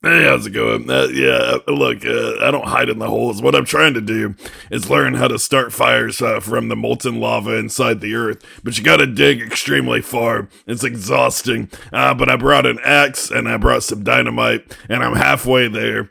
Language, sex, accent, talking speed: English, male, American, 210 wpm